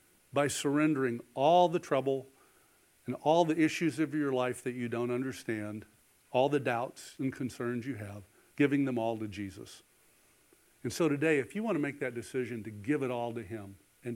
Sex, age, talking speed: male, 50-69, 190 wpm